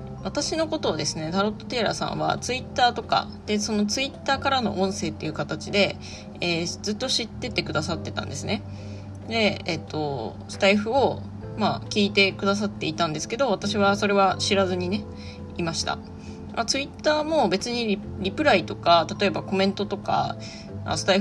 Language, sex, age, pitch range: Japanese, female, 20-39, 155-210 Hz